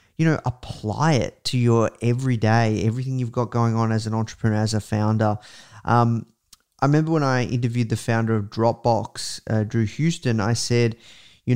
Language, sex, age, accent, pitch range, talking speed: English, male, 30-49, Australian, 110-125 Hz, 175 wpm